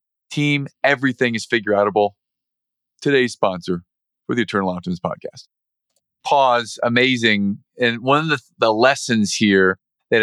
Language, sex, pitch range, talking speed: English, male, 105-125 Hz, 135 wpm